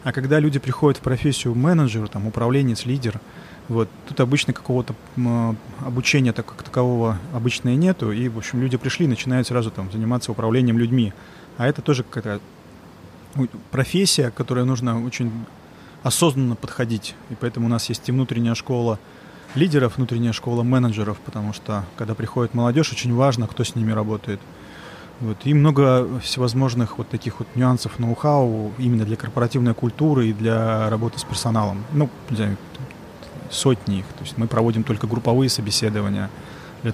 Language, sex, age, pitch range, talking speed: Russian, male, 20-39, 115-130 Hz, 150 wpm